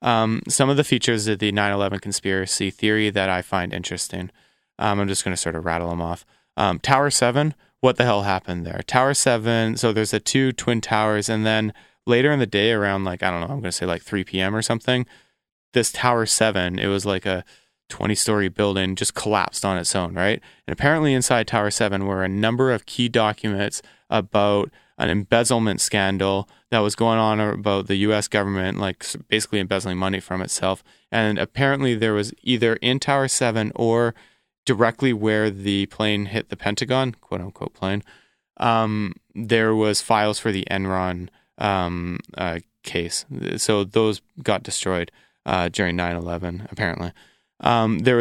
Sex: male